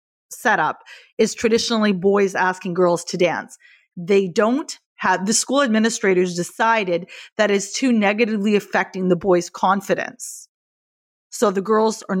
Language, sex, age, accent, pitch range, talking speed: English, female, 30-49, American, 190-230 Hz, 135 wpm